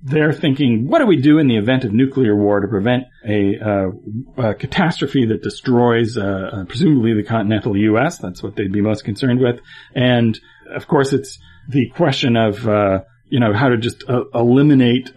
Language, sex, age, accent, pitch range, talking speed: English, male, 40-59, American, 110-145 Hz, 185 wpm